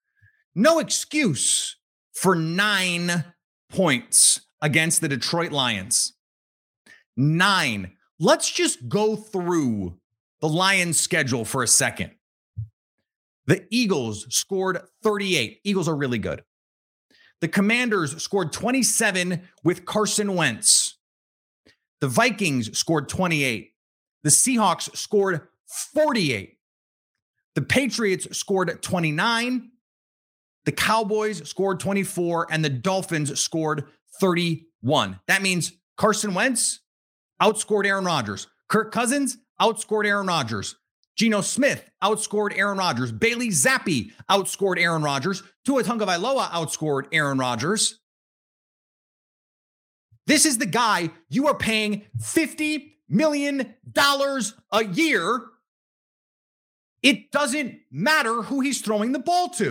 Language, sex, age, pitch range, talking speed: English, male, 30-49, 150-225 Hz, 105 wpm